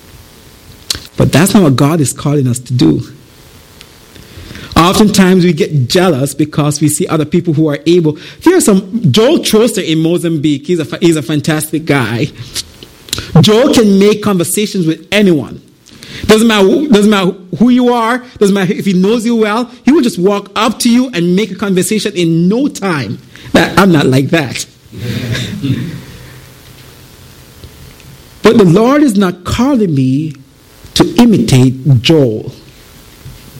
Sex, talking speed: male, 140 wpm